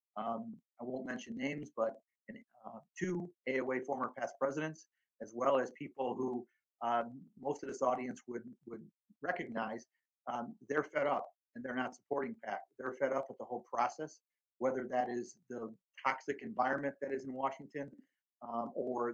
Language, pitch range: English, 125-175 Hz